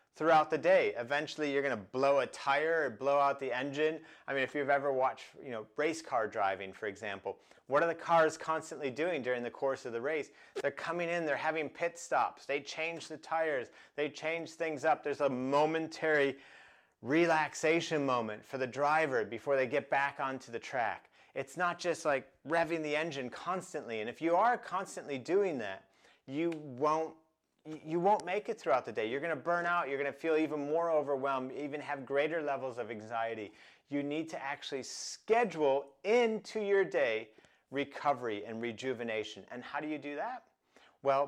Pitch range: 130-160 Hz